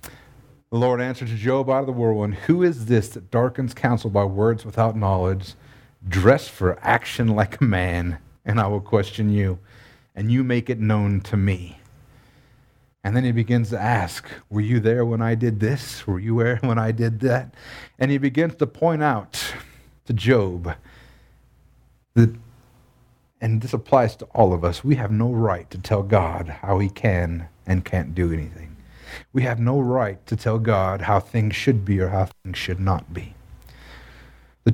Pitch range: 100-125 Hz